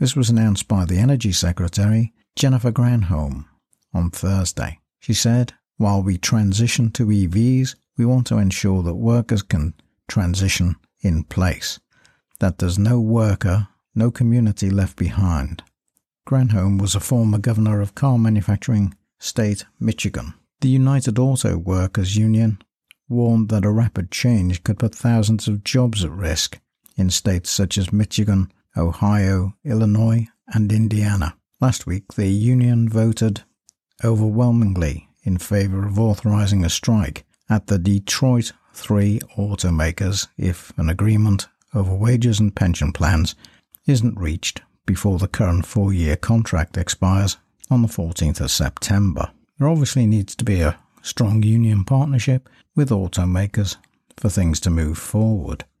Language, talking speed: English, 135 wpm